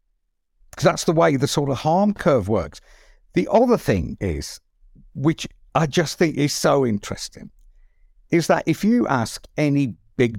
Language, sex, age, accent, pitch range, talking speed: English, male, 60-79, British, 100-170 Hz, 160 wpm